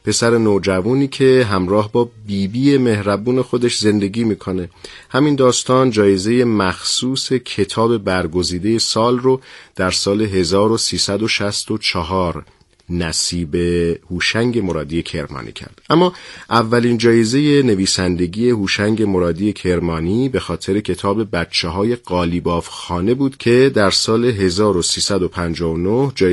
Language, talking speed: Persian, 105 wpm